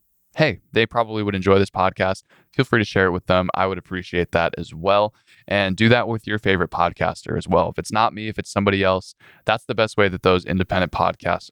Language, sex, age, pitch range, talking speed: English, male, 20-39, 85-100 Hz, 235 wpm